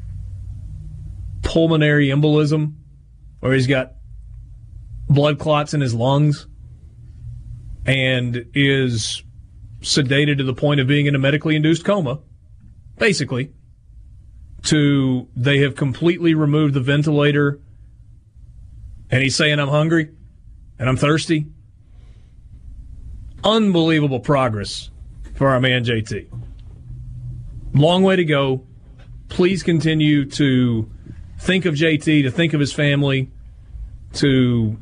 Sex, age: male, 30-49